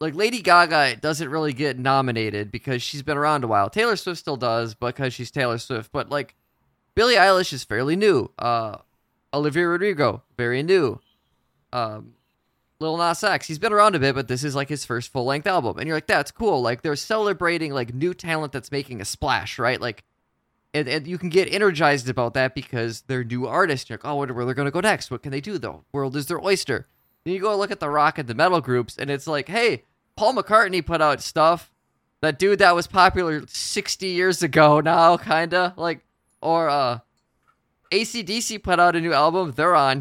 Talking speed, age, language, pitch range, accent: 210 wpm, 20-39, English, 130-180 Hz, American